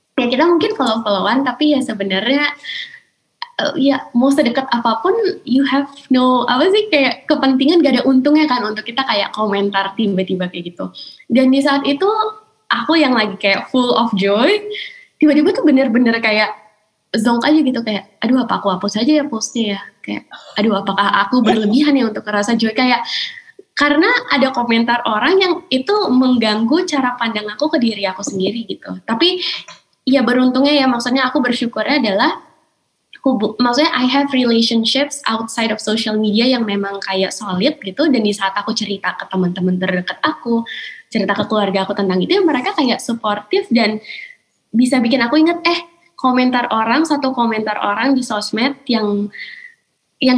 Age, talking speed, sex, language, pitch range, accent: 20-39, 165 wpm, female, Indonesian, 210-285 Hz, native